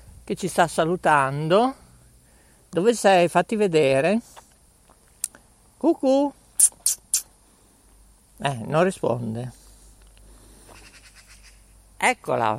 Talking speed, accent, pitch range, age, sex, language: 60 wpm, native, 110-175 Hz, 50-69, male, Italian